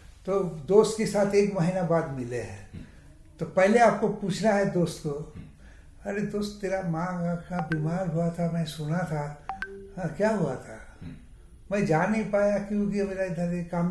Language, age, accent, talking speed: Hindi, 60-79, native, 165 wpm